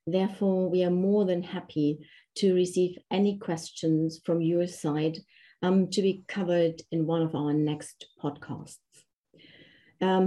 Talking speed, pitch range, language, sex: 140 wpm, 170-200 Hz, English, female